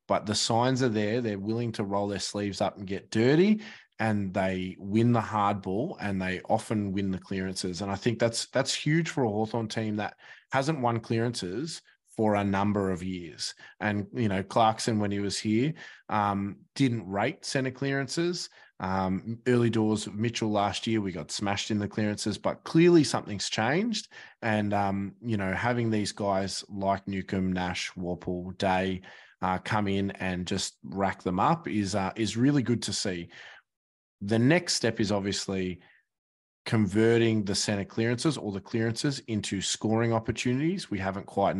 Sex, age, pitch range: male, 20-39, 100-115 Hz